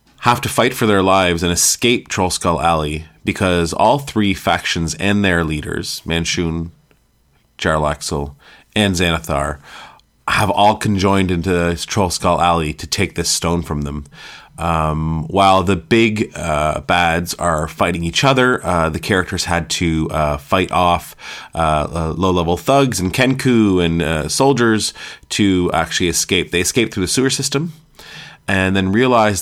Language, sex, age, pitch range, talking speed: English, male, 30-49, 80-100 Hz, 145 wpm